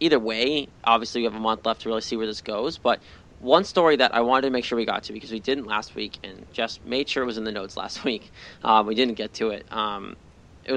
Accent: American